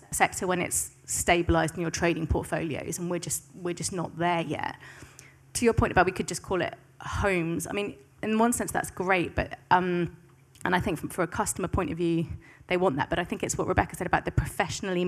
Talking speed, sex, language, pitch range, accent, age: 230 wpm, female, English, 170-195 Hz, British, 20-39